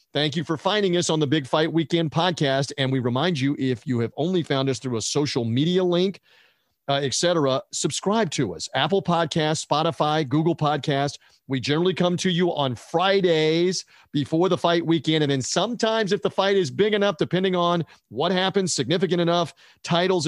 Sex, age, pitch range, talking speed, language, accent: male, 40-59, 135-170 Hz, 185 wpm, English, American